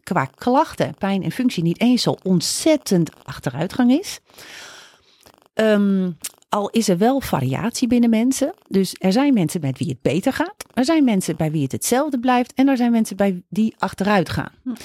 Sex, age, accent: female, 40-59, Dutch